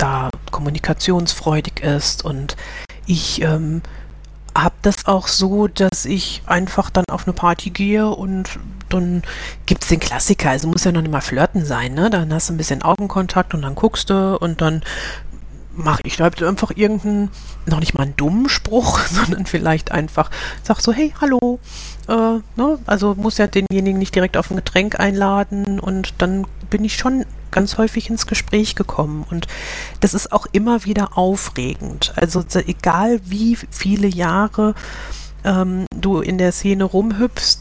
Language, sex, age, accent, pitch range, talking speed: German, female, 40-59, German, 170-200 Hz, 165 wpm